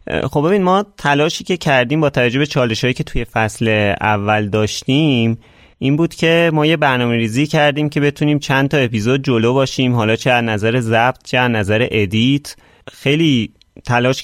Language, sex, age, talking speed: Persian, male, 30-49, 170 wpm